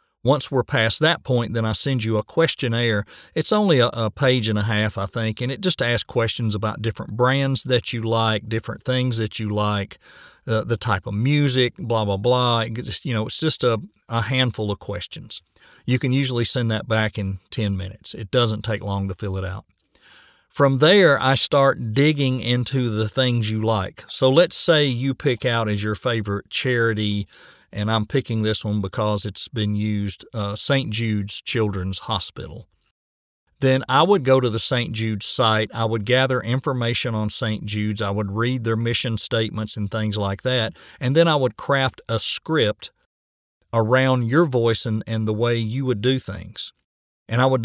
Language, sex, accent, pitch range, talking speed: English, male, American, 105-130 Hz, 195 wpm